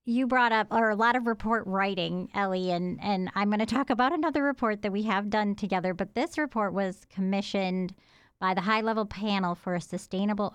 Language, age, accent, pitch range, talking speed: English, 30-49, American, 175-210 Hz, 210 wpm